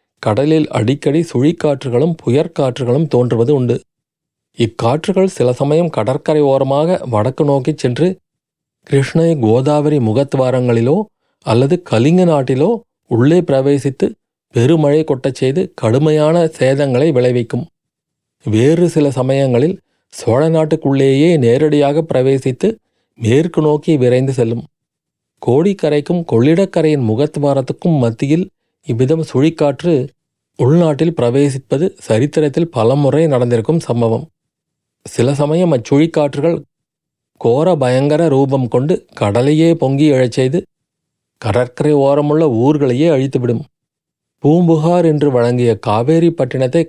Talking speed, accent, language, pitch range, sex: 90 wpm, native, Tamil, 125-155 Hz, male